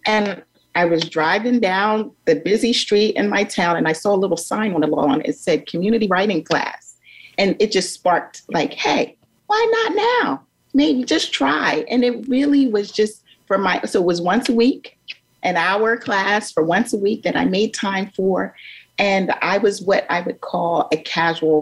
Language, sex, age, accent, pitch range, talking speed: English, female, 40-59, American, 175-240 Hz, 195 wpm